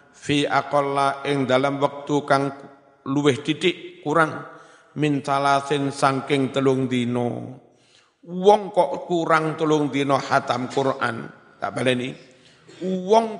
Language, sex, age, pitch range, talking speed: Indonesian, male, 50-69, 135-145 Hz, 110 wpm